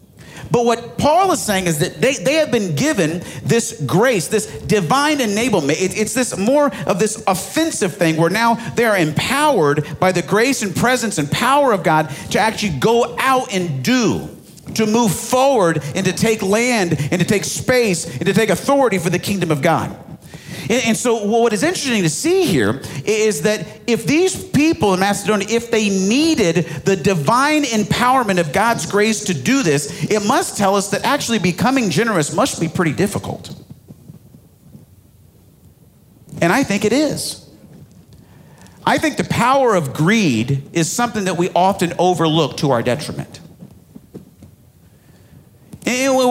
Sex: male